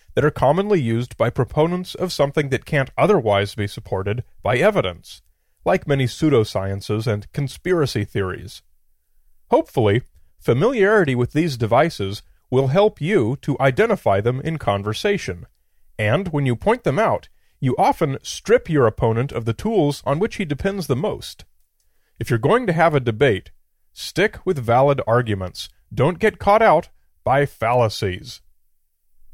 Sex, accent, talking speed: male, American, 145 wpm